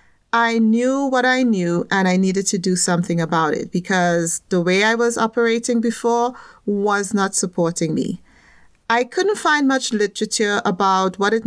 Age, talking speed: 40-59, 165 wpm